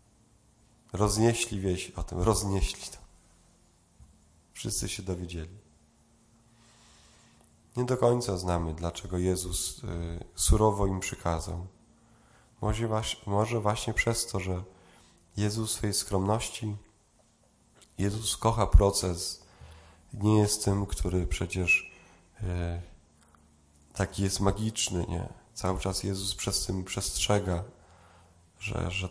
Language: Polish